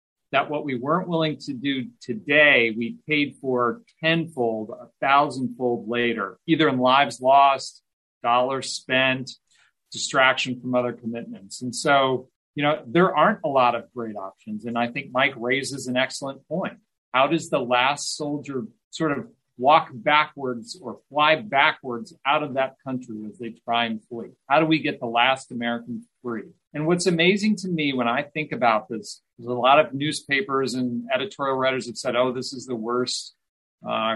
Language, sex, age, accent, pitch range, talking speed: English, male, 40-59, American, 120-150 Hz, 175 wpm